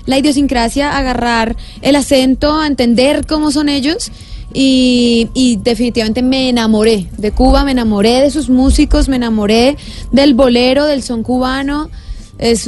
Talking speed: 135 wpm